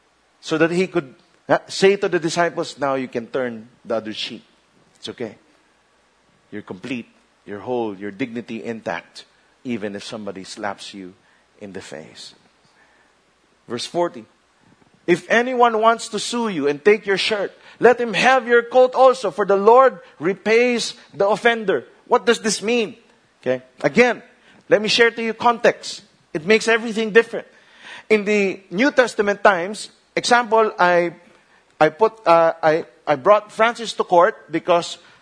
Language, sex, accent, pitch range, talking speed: English, male, Filipino, 170-230 Hz, 150 wpm